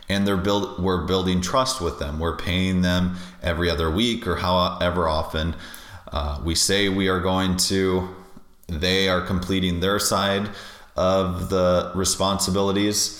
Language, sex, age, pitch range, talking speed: English, male, 30-49, 85-95 Hz, 145 wpm